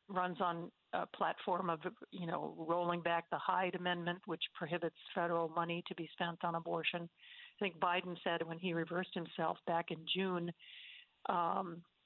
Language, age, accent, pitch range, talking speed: English, 50-69, American, 175-225 Hz, 165 wpm